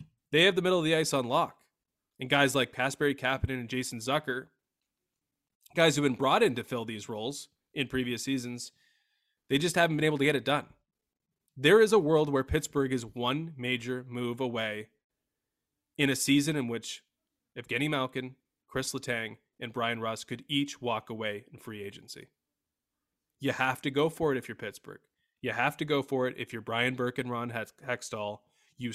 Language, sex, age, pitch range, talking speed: English, male, 20-39, 120-145 Hz, 190 wpm